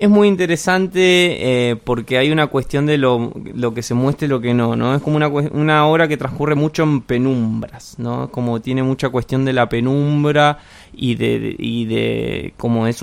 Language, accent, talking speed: English, Argentinian, 200 wpm